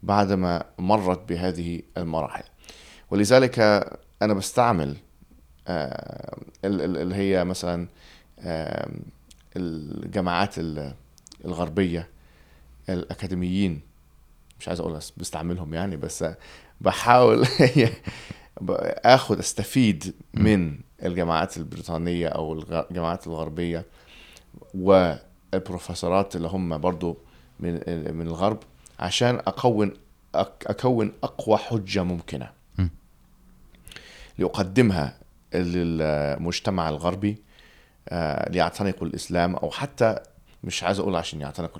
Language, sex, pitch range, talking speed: Arabic, male, 85-105 Hz, 75 wpm